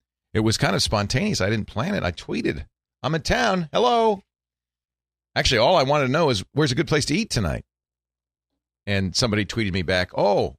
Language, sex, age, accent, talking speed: English, male, 40-59, American, 200 wpm